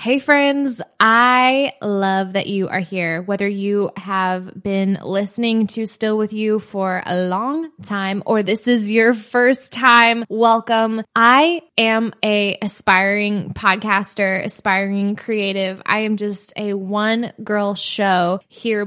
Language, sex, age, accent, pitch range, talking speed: English, female, 10-29, American, 195-220 Hz, 135 wpm